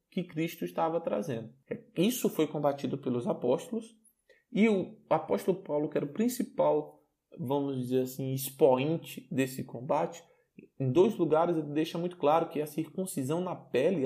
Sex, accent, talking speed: male, Brazilian, 150 wpm